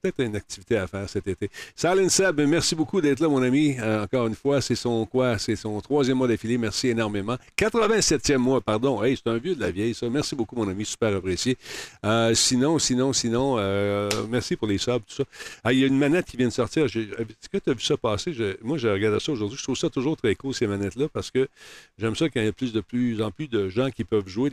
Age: 50-69